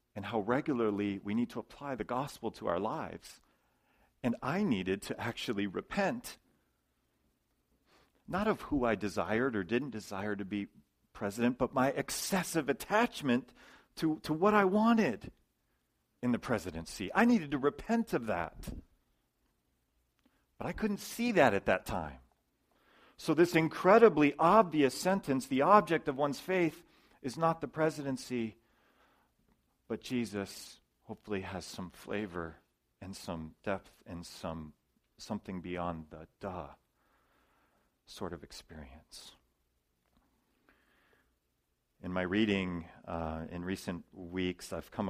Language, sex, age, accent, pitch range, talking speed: English, male, 40-59, American, 85-140 Hz, 130 wpm